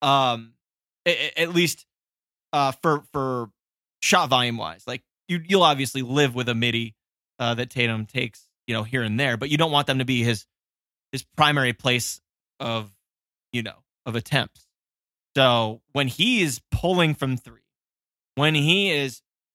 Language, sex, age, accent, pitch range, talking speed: English, male, 20-39, American, 110-140 Hz, 155 wpm